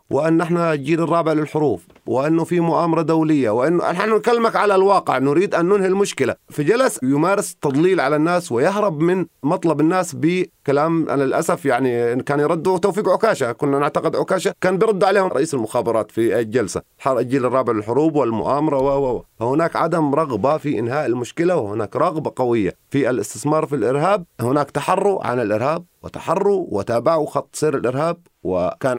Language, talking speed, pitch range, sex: Arabic, 155 wpm, 140-185 Hz, male